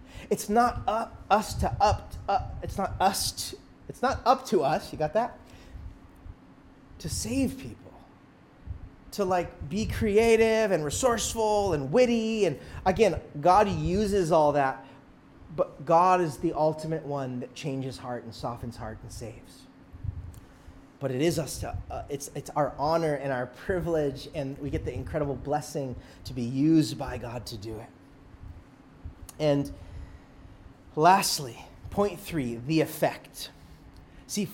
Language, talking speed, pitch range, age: English, 150 wpm, 135-195 Hz, 30-49